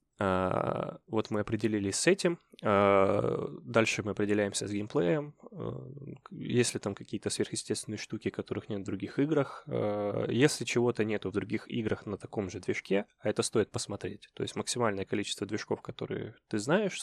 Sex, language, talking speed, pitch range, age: male, Russian, 150 wpm, 100-125 Hz, 20-39